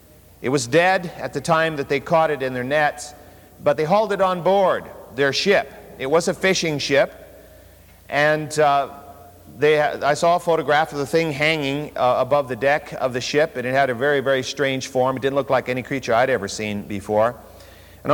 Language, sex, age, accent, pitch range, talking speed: English, male, 50-69, American, 120-165 Hz, 210 wpm